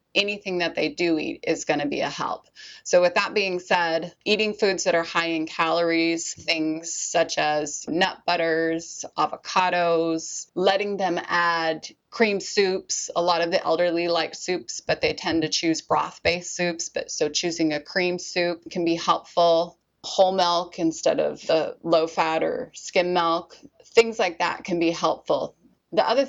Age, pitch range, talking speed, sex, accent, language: 20-39, 165-195 Hz, 165 wpm, female, American, English